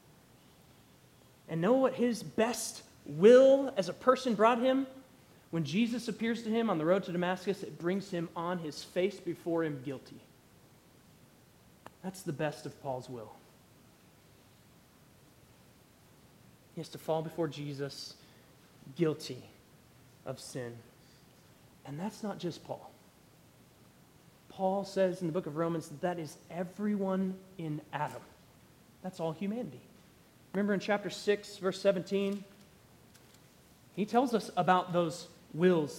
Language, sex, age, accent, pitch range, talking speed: English, male, 30-49, American, 165-225 Hz, 130 wpm